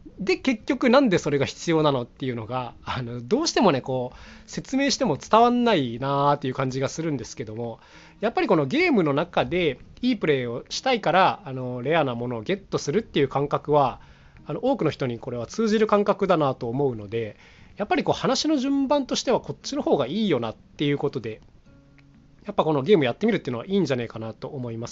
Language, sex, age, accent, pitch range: Japanese, male, 20-39, native, 130-195 Hz